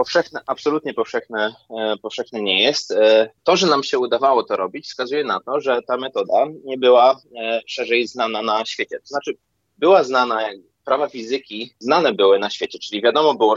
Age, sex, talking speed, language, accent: 20-39, male, 165 wpm, Polish, native